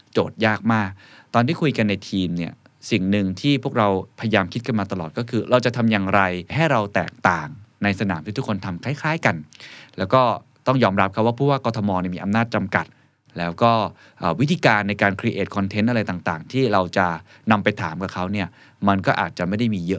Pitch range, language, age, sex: 95-125 Hz, Thai, 20-39, male